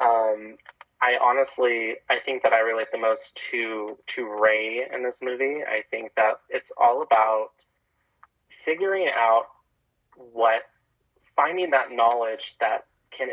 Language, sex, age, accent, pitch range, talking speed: English, male, 20-39, American, 110-160 Hz, 135 wpm